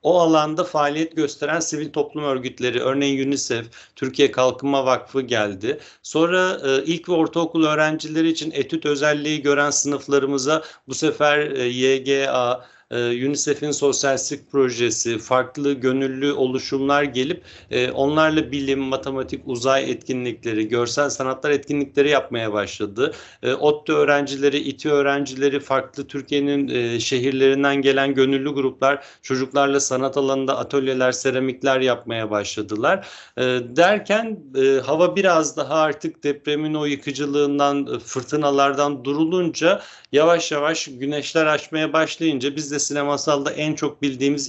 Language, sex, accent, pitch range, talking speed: Turkish, male, native, 130-150 Hz, 120 wpm